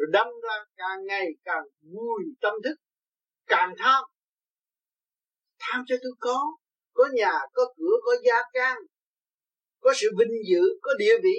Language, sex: Vietnamese, male